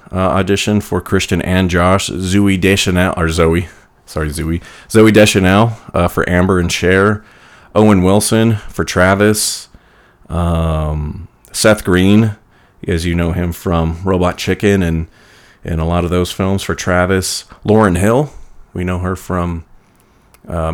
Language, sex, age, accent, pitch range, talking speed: English, male, 30-49, American, 85-100 Hz, 140 wpm